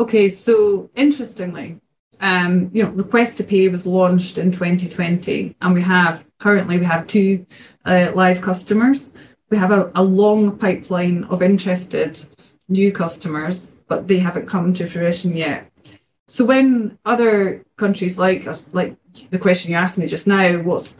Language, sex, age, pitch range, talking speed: English, female, 20-39, 175-205 Hz, 160 wpm